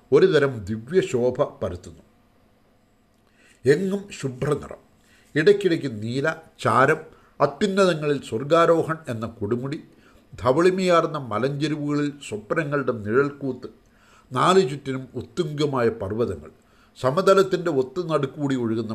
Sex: male